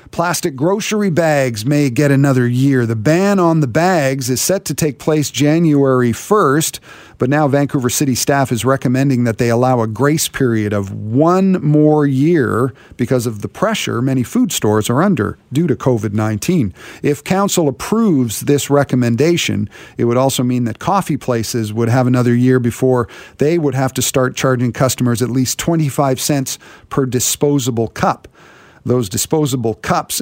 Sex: male